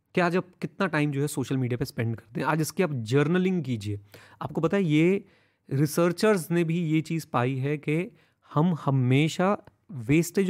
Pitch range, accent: 125-175 Hz, native